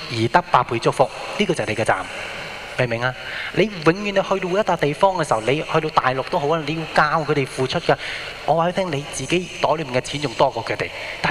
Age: 20-39